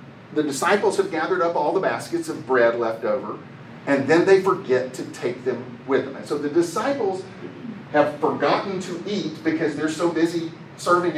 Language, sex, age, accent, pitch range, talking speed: English, male, 40-59, American, 135-195 Hz, 175 wpm